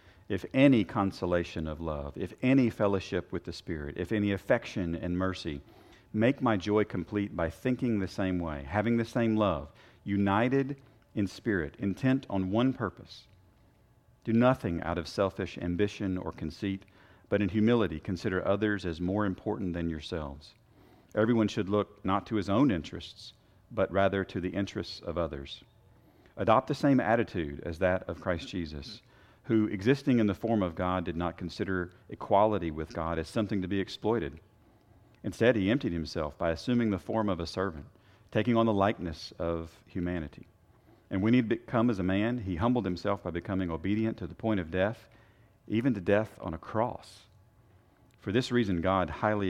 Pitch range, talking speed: 90-110 Hz, 175 wpm